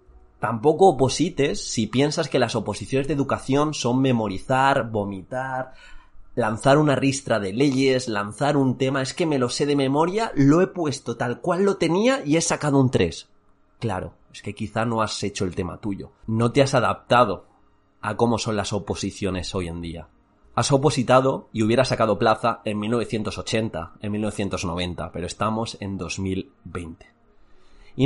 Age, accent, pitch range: 30-49, Spanish, 105-140 Hz